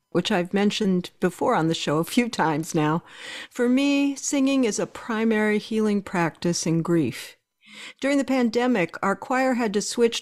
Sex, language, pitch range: female, English, 185-250 Hz